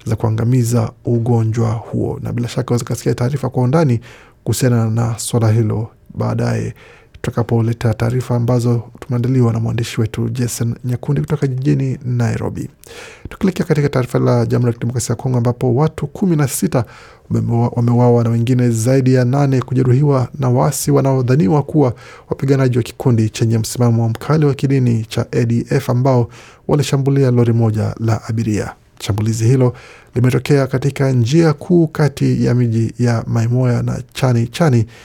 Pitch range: 115-135 Hz